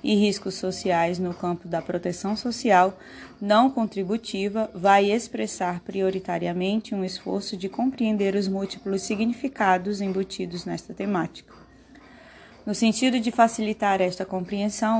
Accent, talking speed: Brazilian, 115 wpm